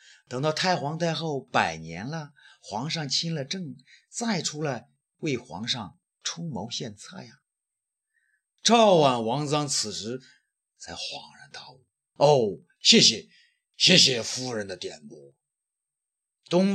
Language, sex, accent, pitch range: Chinese, male, native, 140-205 Hz